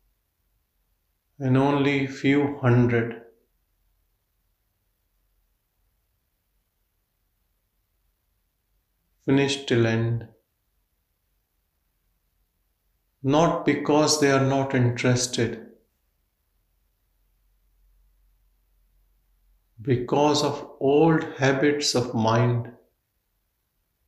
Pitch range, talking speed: 90-125 Hz, 45 wpm